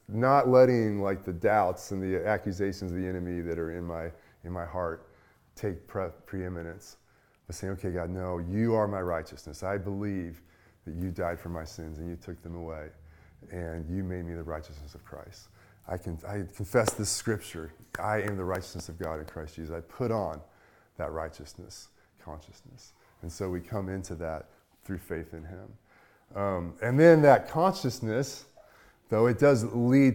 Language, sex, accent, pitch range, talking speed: English, male, American, 85-110 Hz, 180 wpm